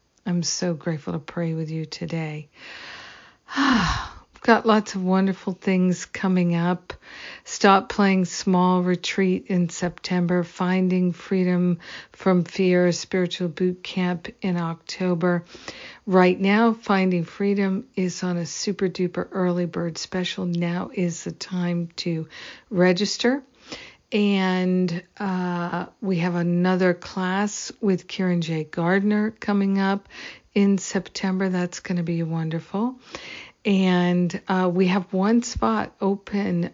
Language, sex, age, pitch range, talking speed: English, female, 50-69, 170-195 Hz, 125 wpm